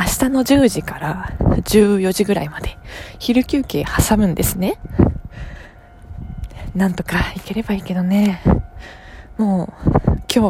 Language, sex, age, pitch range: Japanese, female, 20-39, 170-230 Hz